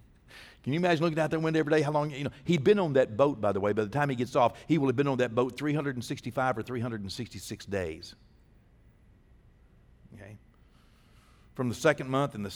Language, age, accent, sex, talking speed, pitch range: English, 60-79, American, male, 215 wpm, 110-140 Hz